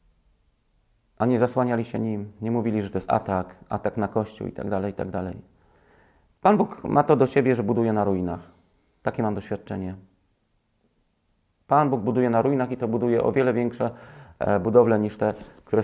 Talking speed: 170 wpm